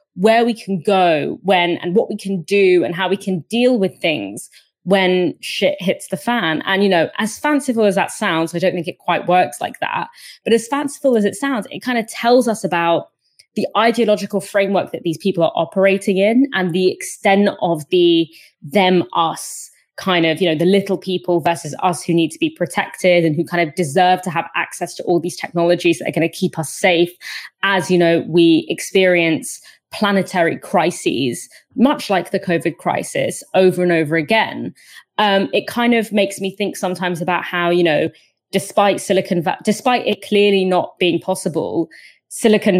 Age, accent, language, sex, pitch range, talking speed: 20-39, British, English, female, 170-200 Hz, 190 wpm